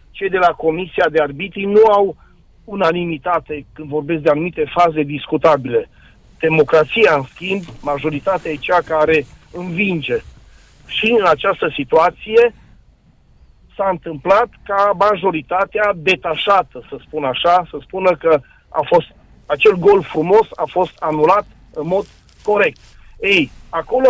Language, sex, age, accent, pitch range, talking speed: Romanian, male, 40-59, native, 155-220 Hz, 125 wpm